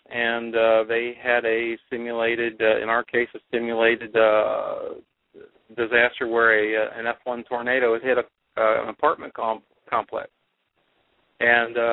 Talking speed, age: 145 wpm, 40-59